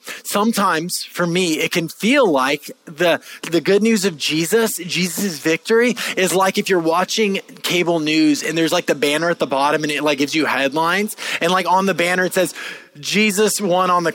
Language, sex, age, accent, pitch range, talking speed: English, male, 20-39, American, 160-215 Hz, 200 wpm